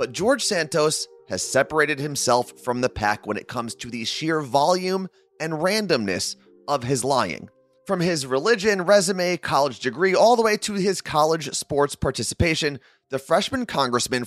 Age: 30-49